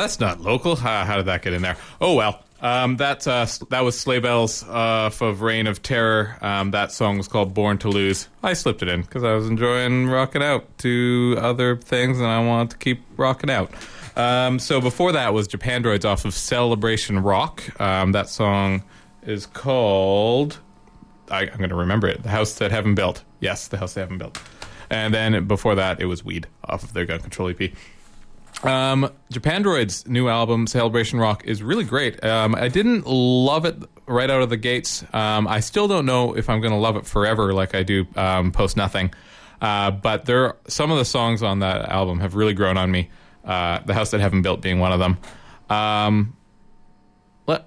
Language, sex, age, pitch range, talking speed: English, male, 20-39, 100-125 Hz, 205 wpm